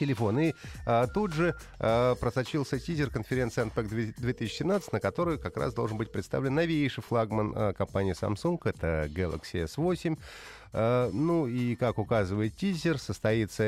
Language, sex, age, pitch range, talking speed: Russian, male, 30-49, 95-130 Hz, 125 wpm